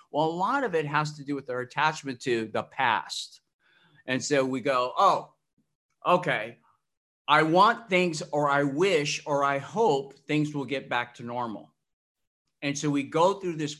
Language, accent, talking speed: English, American, 180 wpm